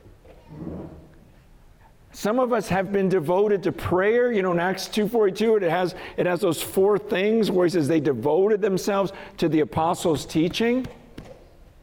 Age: 50-69